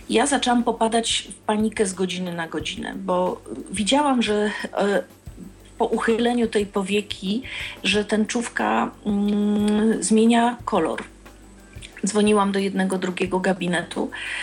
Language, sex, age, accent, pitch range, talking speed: Polish, female, 40-59, native, 190-235 Hz, 105 wpm